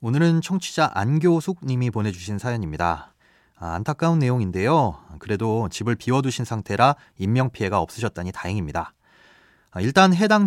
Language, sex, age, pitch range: Korean, male, 30-49, 105-150 Hz